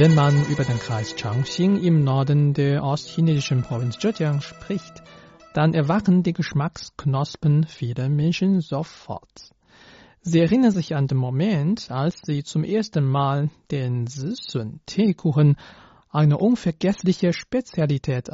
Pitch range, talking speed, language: 140-180 Hz, 120 wpm, German